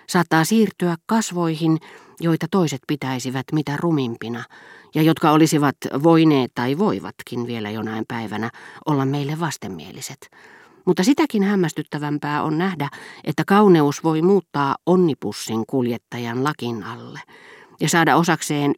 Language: Finnish